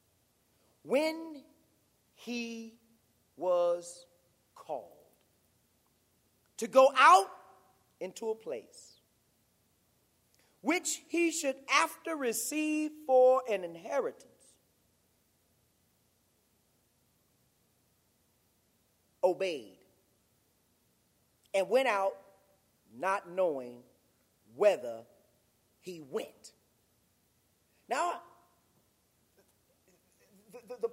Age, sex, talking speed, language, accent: 40-59, male, 55 wpm, English, American